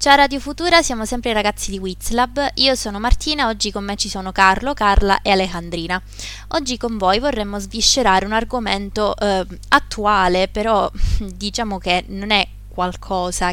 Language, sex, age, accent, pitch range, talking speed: Italian, female, 20-39, native, 180-210 Hz, 160 wpm